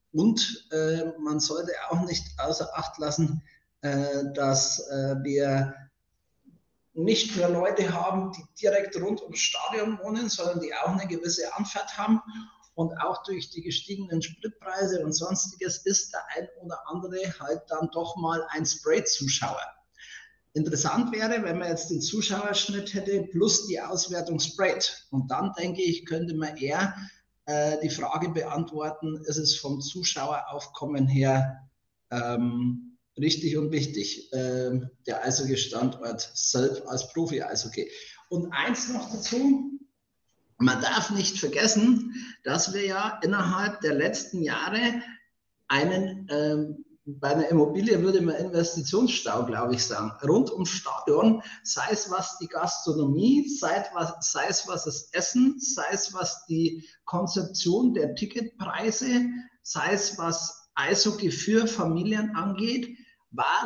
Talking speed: 135 wpm